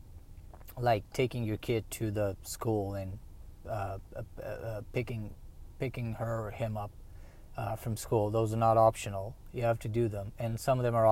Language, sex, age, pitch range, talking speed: English, male, 30-49, 100-145 Hz, 185 wpm